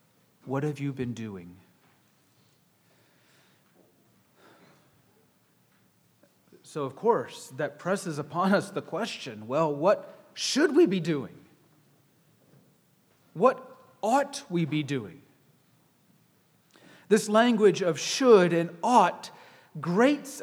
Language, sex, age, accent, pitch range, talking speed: English, male, 40-59, American, 165-225 Hz, 95 wpm